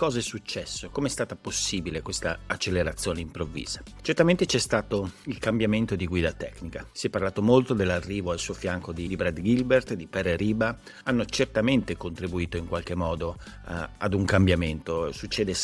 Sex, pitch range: male, 90-115 Hz